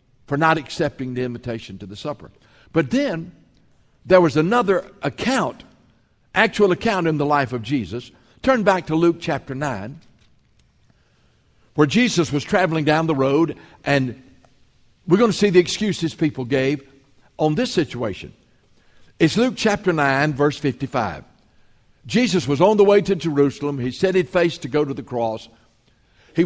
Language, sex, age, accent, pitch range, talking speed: English, male, 60-79, American, 135-175 Hz, 155 wpm